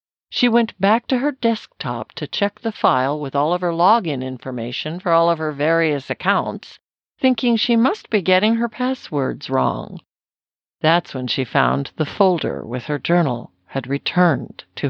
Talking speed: 170 wpm